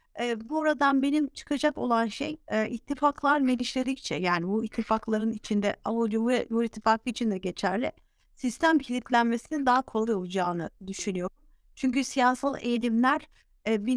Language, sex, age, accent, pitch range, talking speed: Turkish, female, 50-69, native, 205-255 Hz, 135 wpm